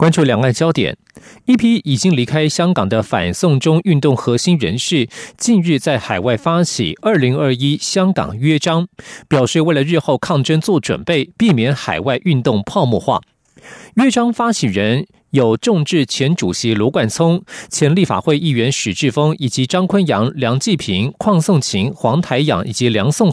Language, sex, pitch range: Chinese, male, 130-175 Hz